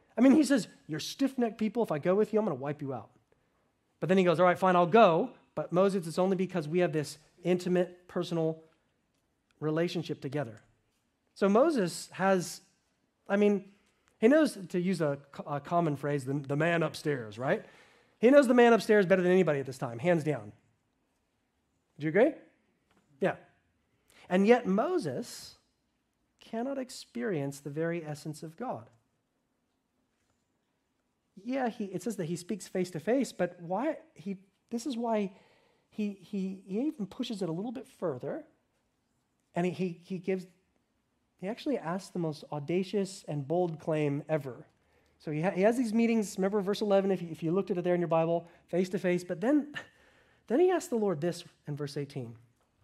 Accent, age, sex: American, 40-59, male